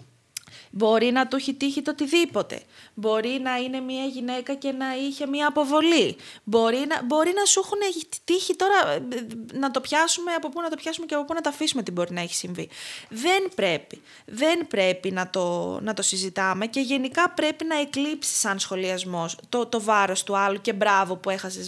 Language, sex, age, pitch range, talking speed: Greek, female, 20-39, 210-340 Hz, 190 wpm